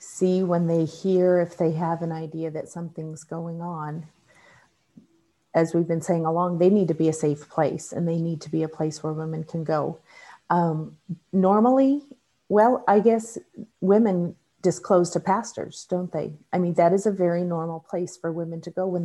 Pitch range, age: 165-205 Hz, 40-59